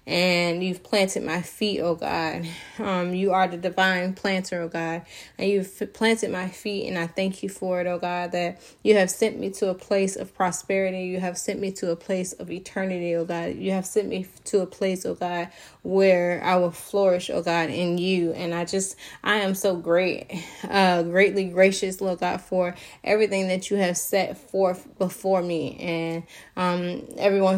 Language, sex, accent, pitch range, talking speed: English, female, American, 175-195 Hz, 195 wpm